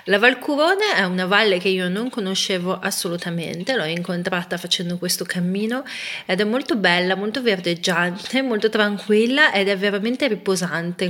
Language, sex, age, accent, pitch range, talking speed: Italian, female, 30-49, native, 180-220 Hz, 145 wpm